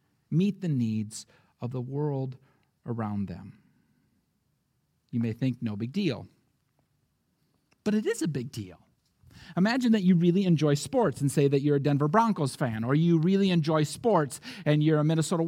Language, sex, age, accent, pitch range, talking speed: English, male, 40-59, American, 150-230 Hz, 165 wpm